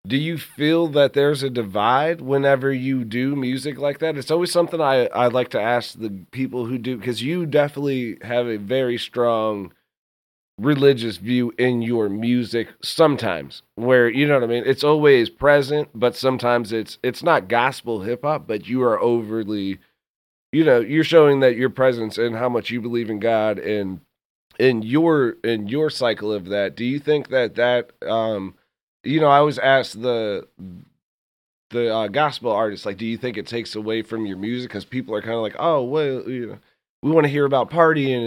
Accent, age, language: American, 30-49, English